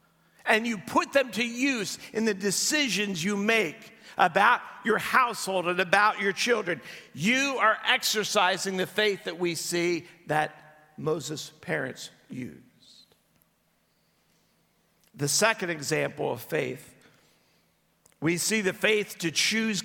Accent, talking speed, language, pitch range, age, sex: American, 125 wpm, English, 155-205 Hz, 50-69, male